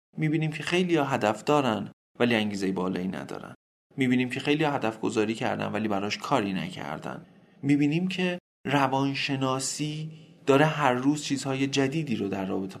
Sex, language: male, Persian